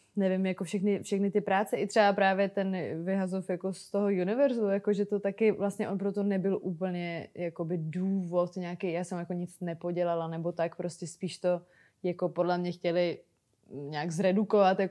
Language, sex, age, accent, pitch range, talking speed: Czech, female, 20-39, native, 175-195 Hz, 150 wpm